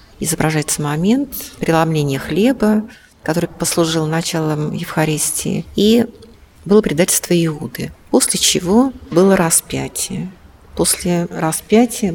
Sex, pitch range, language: female, 150-195 Hz, Russian